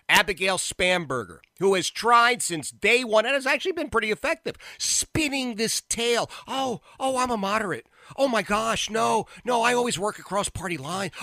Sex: male